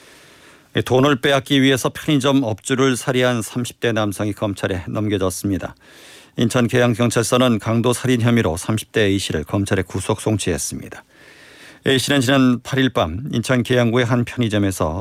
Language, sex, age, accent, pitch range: Korean, male, 50-69, native, 100-125 Hz